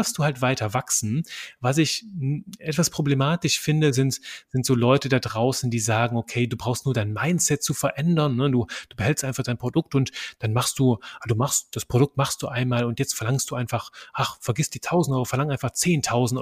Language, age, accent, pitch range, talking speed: German, 30-49, German, 120-145 Hz, 210 wpm